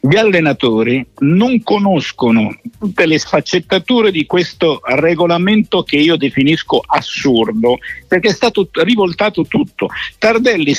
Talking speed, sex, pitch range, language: 110 wpm, male, 145-205 Hz, Italian